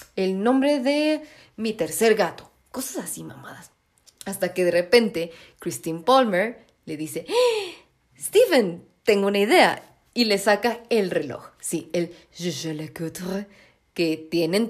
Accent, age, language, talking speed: Mexican, 30-49, Spanish, 135 wpm